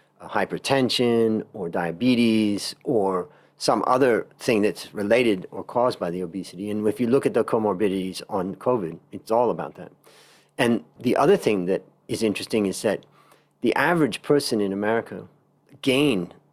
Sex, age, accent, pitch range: male, 40-59, American, 95-130 Hz